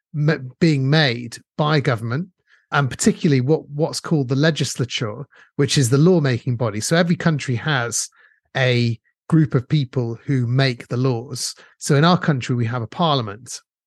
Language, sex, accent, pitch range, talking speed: English, male, British, 125-155 Hz, 155 wpm